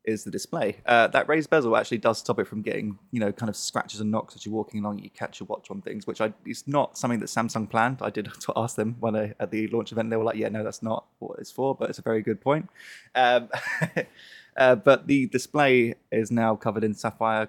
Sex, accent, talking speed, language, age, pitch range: male, British, 250 wpm, English, 20-39, 110-125 Hz